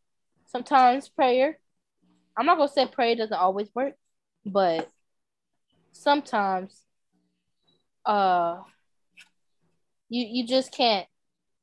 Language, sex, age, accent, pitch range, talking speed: English, female, 10-29, American, 200-270 Hz, 95 wpm